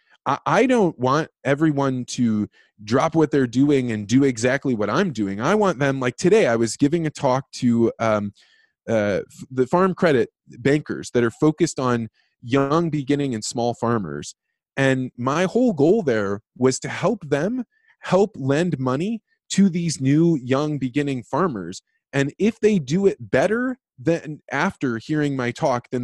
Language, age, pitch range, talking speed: English, 20-39, 120-170 Hz, 165 wpm